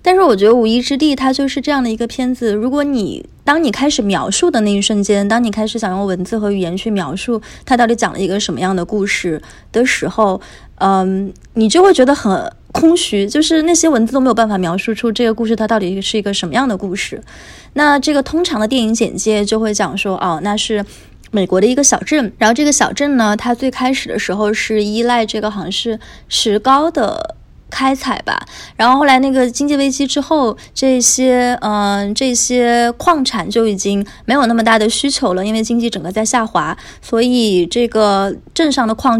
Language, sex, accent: Chinese, female, native